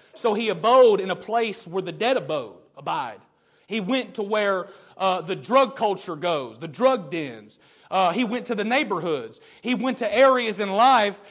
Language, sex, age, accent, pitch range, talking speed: English, male, 40-59, American, 200-250 Hz, 185 wpm